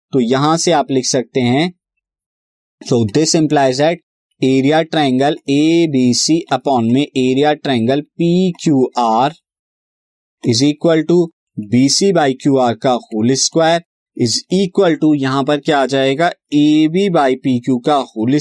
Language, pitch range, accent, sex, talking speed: Hindi, 135-175 Hz, native, male, 145 wpm